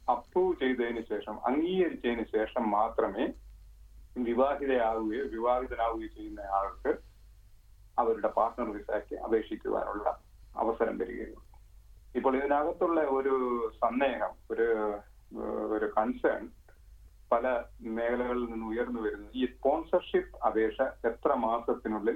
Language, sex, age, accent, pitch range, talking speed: Malayalam, male, 30-49, native, 110-150 Hz, 70 wpm